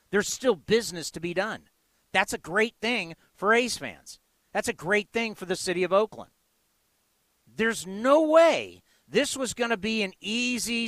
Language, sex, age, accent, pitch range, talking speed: English, male, 50-69, American, 185-230 Hz, 175 wpm